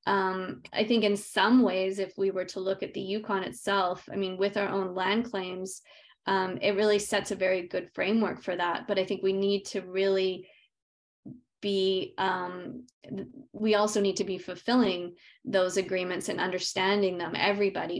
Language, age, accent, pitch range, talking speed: English, 20-39, American, 185-205 Hz, 175 wpm